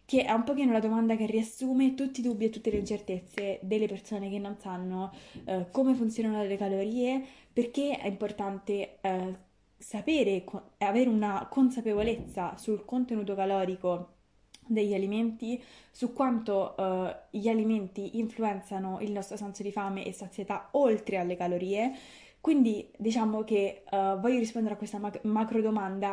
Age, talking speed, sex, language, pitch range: 20-39, 145 wpm, female, Italian, 195-225 Hz